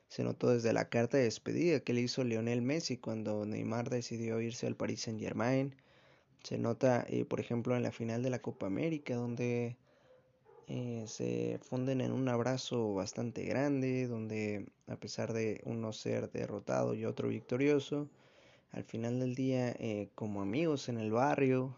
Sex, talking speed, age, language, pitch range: male, 165 wpm, 20-39, Spanish, 110-130 Hz